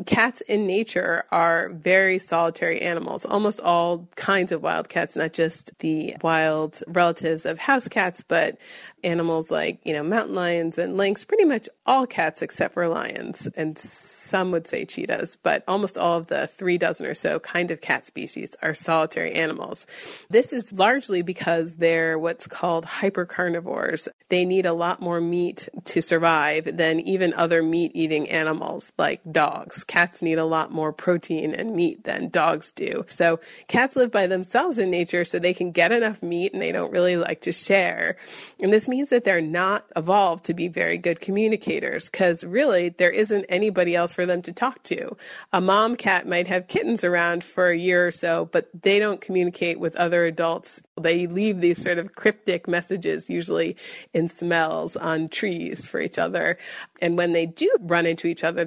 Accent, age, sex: American, 30-49, female